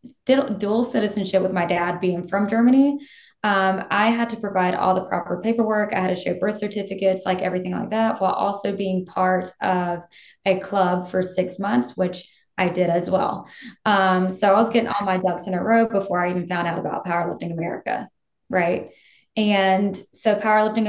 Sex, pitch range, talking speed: female, 180-205 Hz, 185 wpm